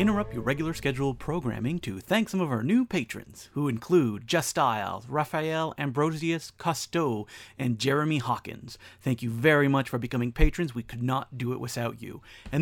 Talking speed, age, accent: 175 wpm, 30-49, American